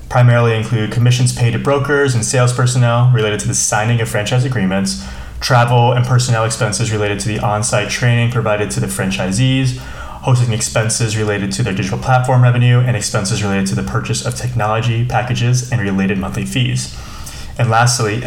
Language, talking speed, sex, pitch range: English, 170 wpm, male, 105-125 Hz